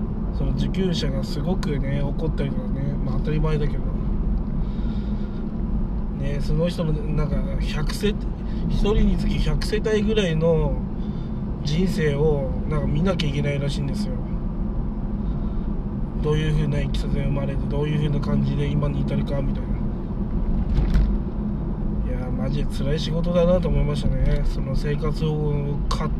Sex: male